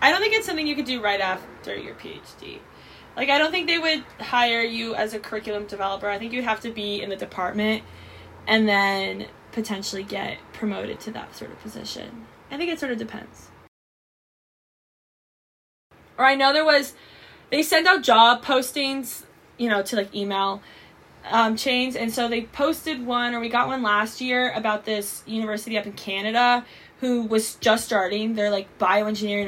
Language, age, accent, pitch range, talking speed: English, 20-39, American, 205-255 Hz, 185 wpm